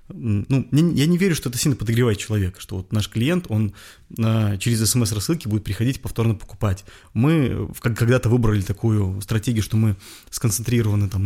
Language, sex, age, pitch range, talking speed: Russian, male, 20-39, 100-120 Hz, 155 wpm